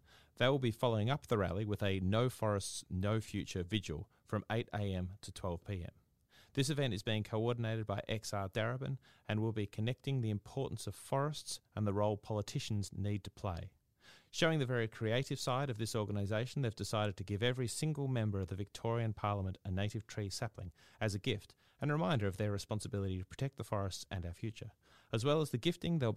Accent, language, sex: Australian, English, male